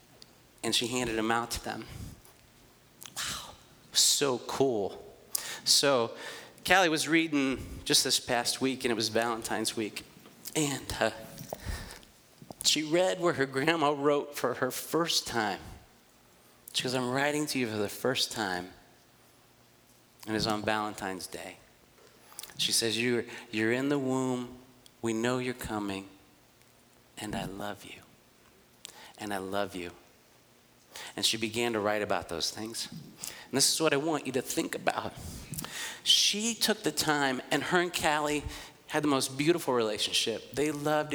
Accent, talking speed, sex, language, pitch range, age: American, 150 wpm, male, English, 115-165 Hz, 40-59